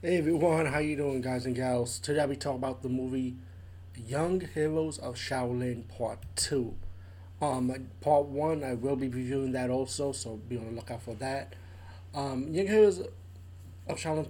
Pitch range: 90-135 Hz